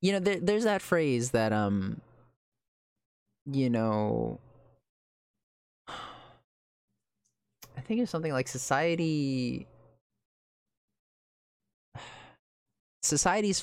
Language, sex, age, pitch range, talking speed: English, male, 20-39, 105-130 Hz, 70 wpm